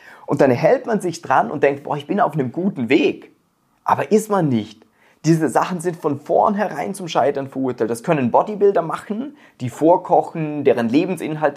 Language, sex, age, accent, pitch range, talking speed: German, male, 30-49, German, 135-190 Hz, 180 wpm